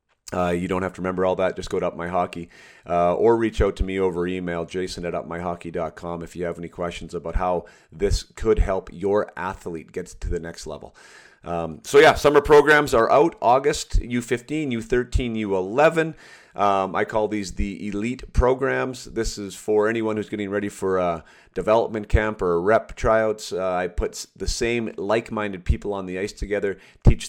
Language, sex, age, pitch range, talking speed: English, male, 40-59, 85-105 Hz, 185 wpm